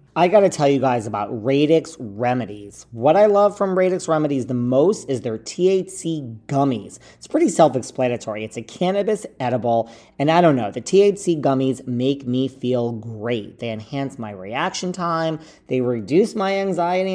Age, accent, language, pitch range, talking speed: 40-59, American, English, 115-160 Hz, 170 wpm